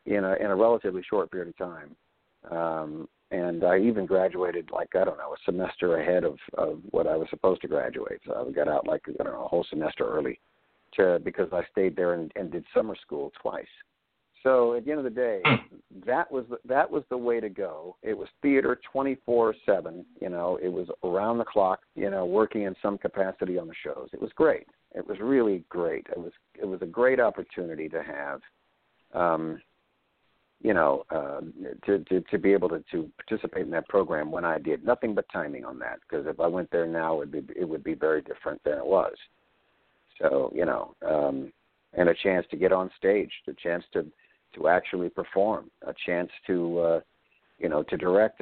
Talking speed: 215 wpm